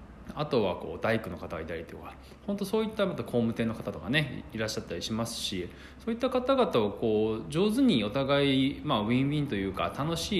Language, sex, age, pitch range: Japanese, male, 20-39, 100-165 Hz